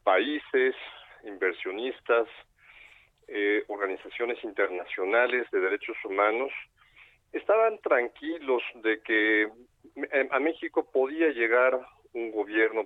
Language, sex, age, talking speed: Spanish, male, 50-69, 85 wpm